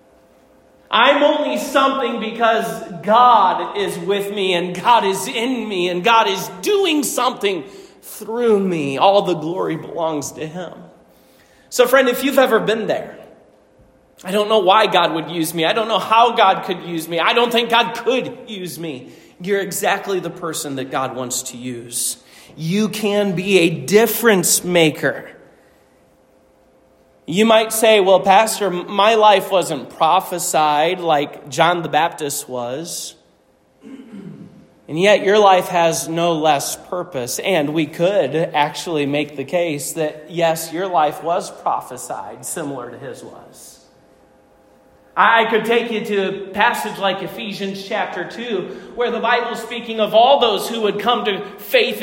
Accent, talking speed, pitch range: American, 155 wpm, 170-235 Hz